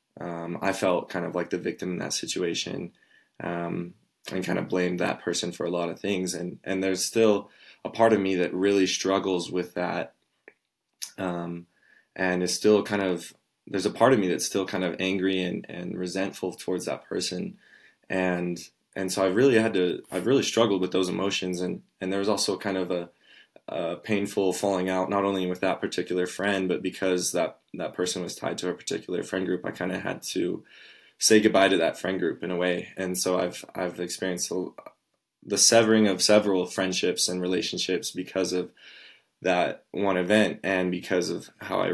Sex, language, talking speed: male, English, 195 wpm